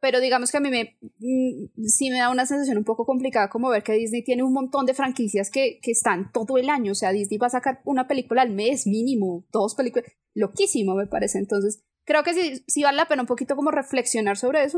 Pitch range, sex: 235-290 Hz, female